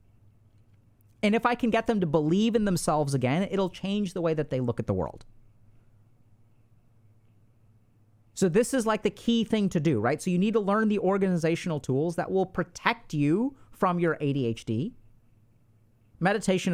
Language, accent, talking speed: English, American, 170 wpm